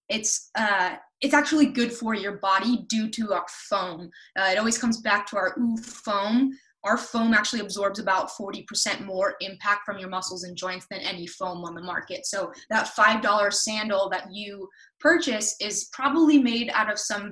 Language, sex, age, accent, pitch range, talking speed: English, female, 20-39, American, 195-235 Hz, 185 wpm